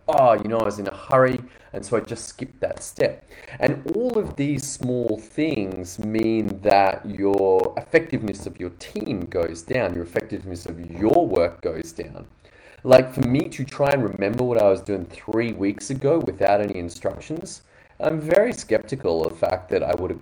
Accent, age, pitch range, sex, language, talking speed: Australian, 20-39, 95-125 Hz, male, English, 190 wpm